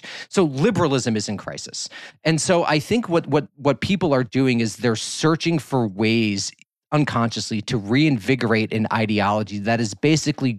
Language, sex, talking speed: English, male, 160 wpm